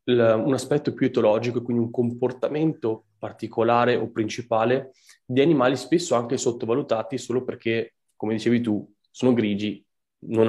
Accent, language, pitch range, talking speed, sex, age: native, Italian, 105-125 Hz, 135 wpm, male, 20-39